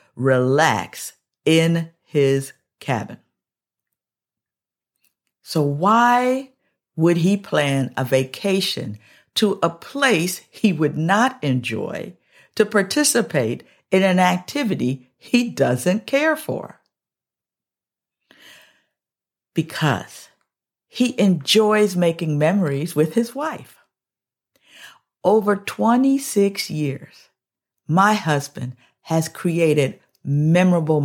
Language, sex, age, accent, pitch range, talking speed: English, female, 50-69, American, 140-210 Hz, 85 wpm